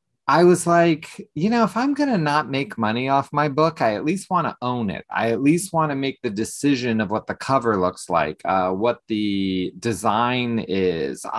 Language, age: English, 30-49